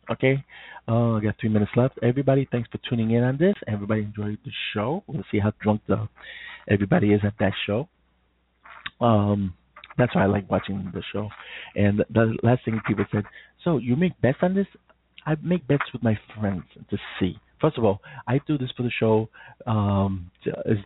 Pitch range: 105-145 Hz